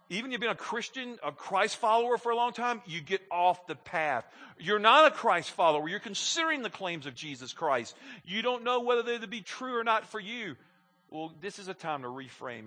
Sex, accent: male, American